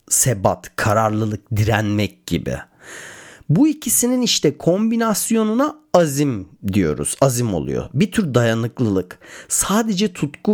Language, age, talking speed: Turkish, 40-59, 95 wpm